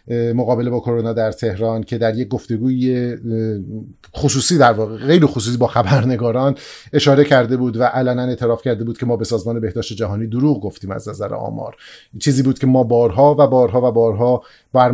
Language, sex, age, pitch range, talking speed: Persian, male, 30-49, 115-140 Hz, 180 wpm